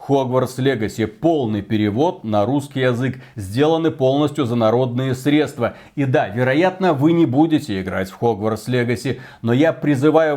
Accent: native